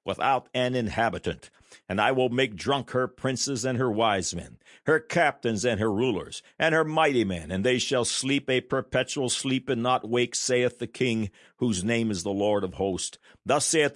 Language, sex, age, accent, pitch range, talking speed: English, male, 60-79, American, 100-130 Hz, 195 wpm